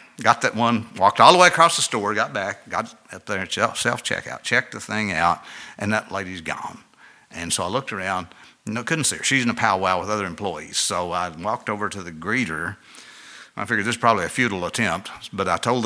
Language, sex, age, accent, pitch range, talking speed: English, male, 60-79, American, 85-110 Hz, 220 wpm